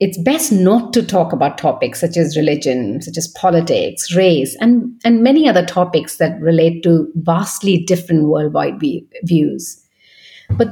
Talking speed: 150 wpm